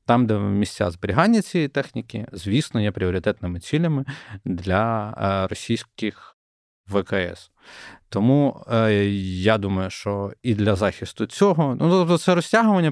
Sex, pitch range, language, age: male, 100-125 Hz, Ukrainian, 20-39